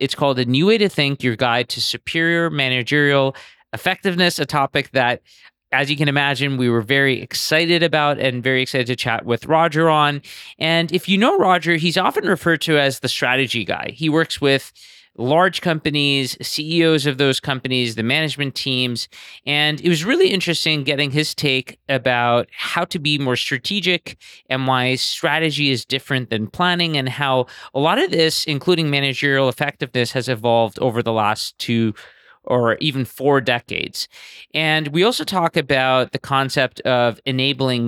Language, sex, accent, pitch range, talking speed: English, male, American, 130-165 Hz, 170 wpm